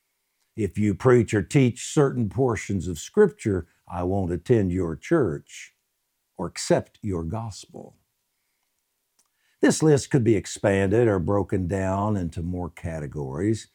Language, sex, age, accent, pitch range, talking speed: English, male, 60-79, American, 95-135 Hz, 125 wpm